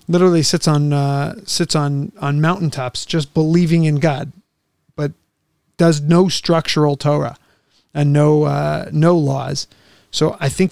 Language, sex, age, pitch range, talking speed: English, male, 30-49, 145-170 Hz, 140 wpm